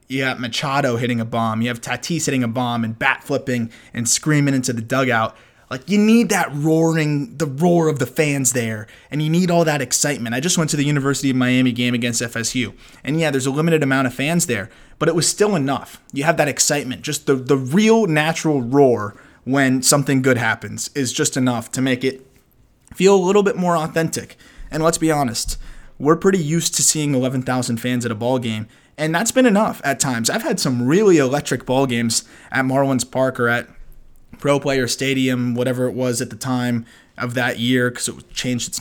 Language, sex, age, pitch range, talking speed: English, male, 20-39, 125-155 Hz, 210 wpm